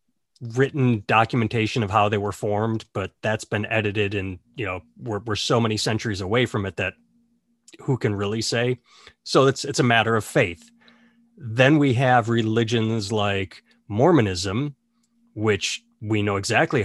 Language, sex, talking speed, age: English, male, 155 wpm, 30-49